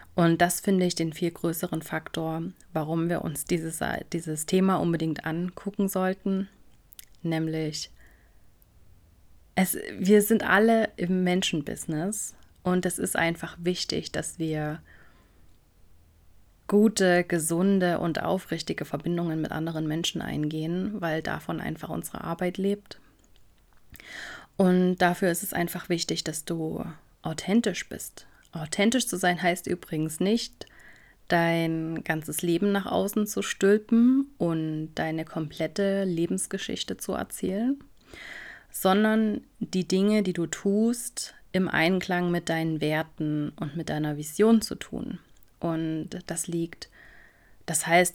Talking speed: 120 wpm